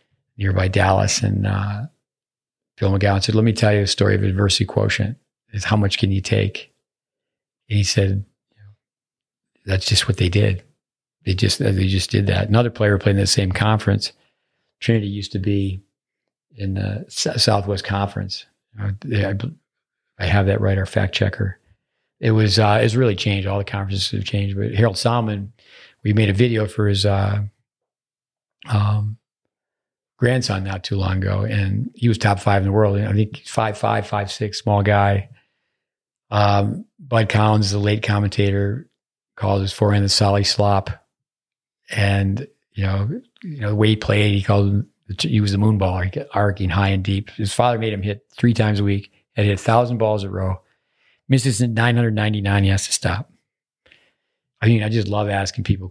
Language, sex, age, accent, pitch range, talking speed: English, male, 40-59, American, 100-110 Hz, 180 wpm